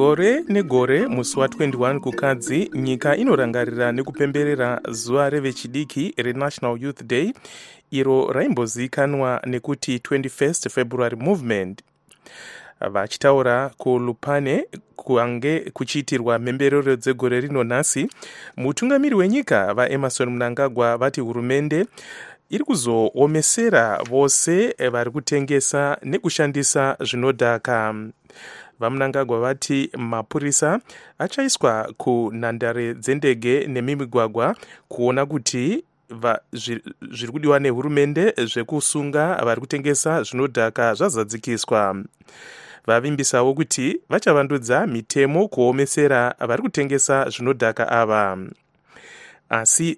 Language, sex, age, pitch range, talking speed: English, male, 30-49, 120-145 Hz, 85 wpm